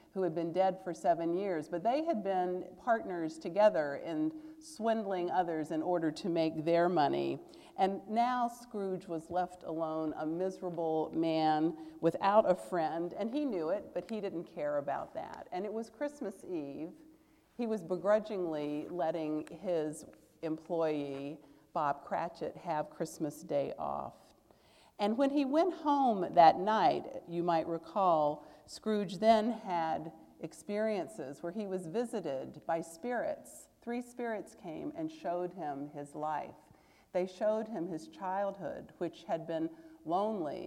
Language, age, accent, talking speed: English, 50-69, American, 145 wpm